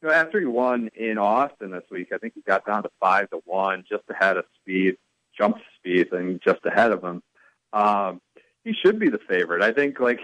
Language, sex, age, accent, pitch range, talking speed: English, male, 40-59, American, 100-140 Hz, 225 wpm